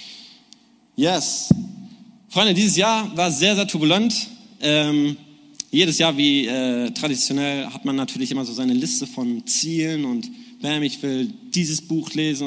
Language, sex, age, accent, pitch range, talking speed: German, male, 20-39, German, 155-235 Hz, 145 wpm